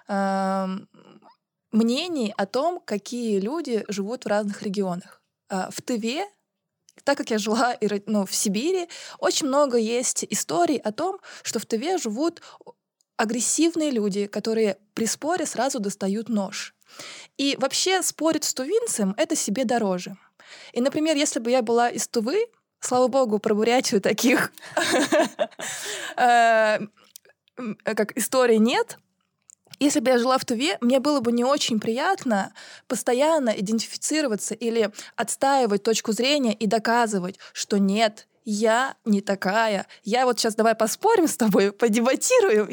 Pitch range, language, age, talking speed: 205-270 Hz, Russian, 20-39, 130 wpm